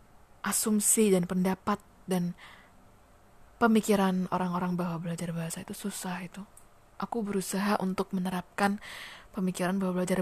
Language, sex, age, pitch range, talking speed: Indonesian, female, 20-39, 180-205 Hz, 110 wpm